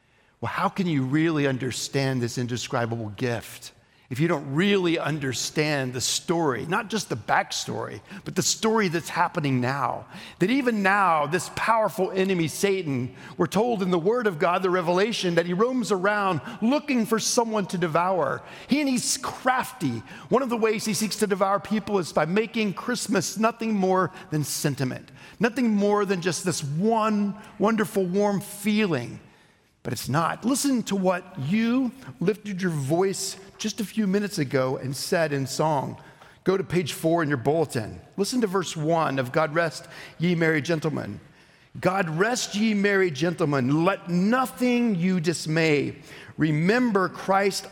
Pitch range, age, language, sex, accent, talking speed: 150-205 Hz, 50-69, English, male, American, 160 wpm